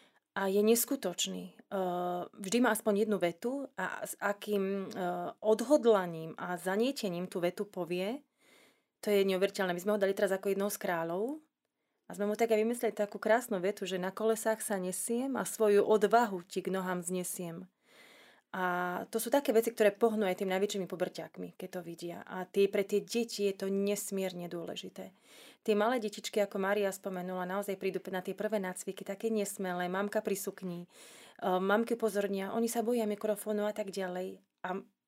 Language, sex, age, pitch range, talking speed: Slovak, female, 30-49, 185-215 Hz, 170 wpm